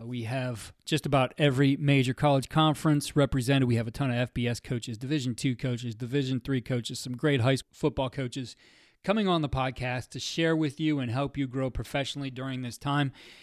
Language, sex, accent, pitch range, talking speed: English, male, American, 130-155 Hz, 195 wpm